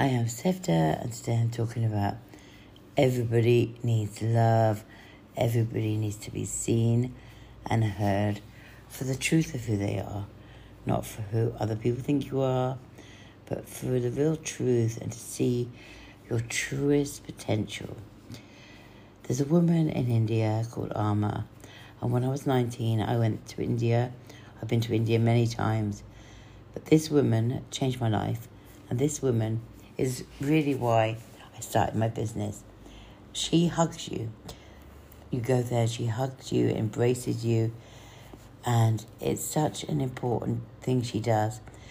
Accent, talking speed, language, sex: British, 145 wpm, English, female